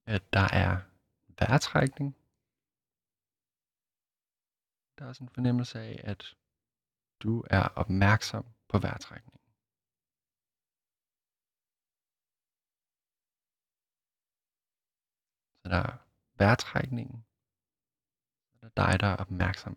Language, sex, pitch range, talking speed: Danish, male, 100-120 Hz, 80 wpm